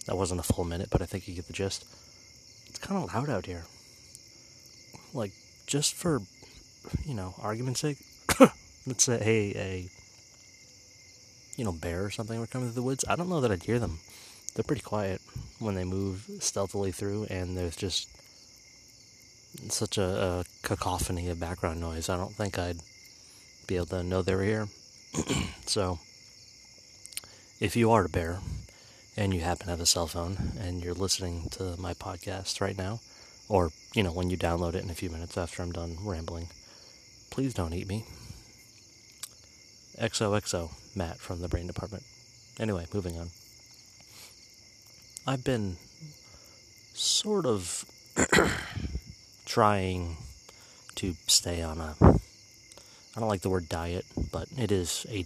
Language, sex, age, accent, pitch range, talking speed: English, male, 30-49, American, 90-115 Hz, 155 wpm